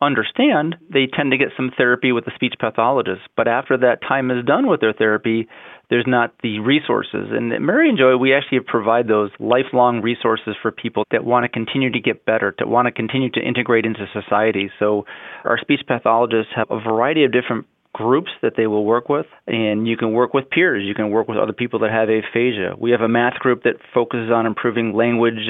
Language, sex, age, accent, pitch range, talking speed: English, male, 30-49, American, 110-125 Hz, 215 wpm